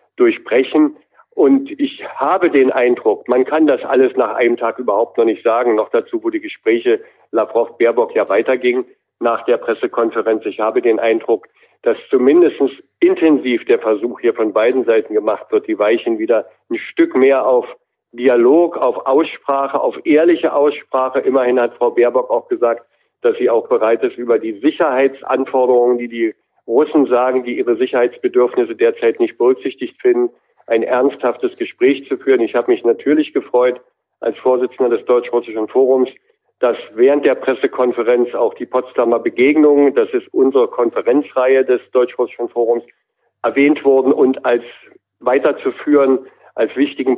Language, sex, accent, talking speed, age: German, male, German, 150 wpm, 50-69